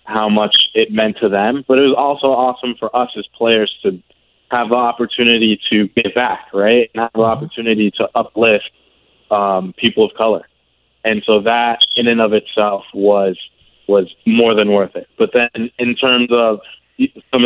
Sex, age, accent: male, 20-39, American